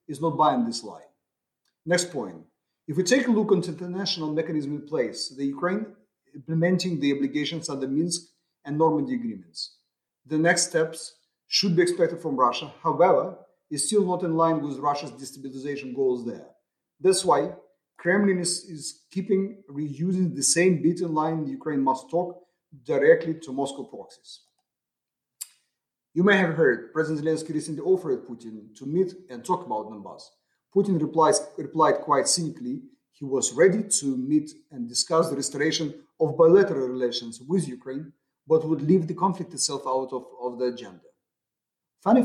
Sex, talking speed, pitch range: male, 160 wpm, 140-180 Hz